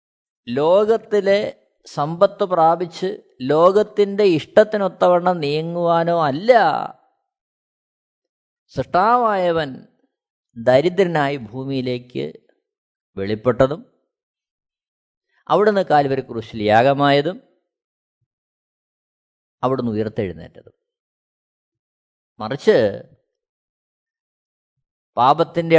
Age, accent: 20-39, native